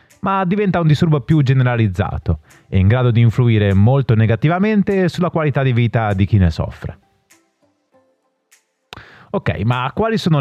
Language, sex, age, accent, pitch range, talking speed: Italian, male, 30-49, native, 100-145 Hz, 145 wpm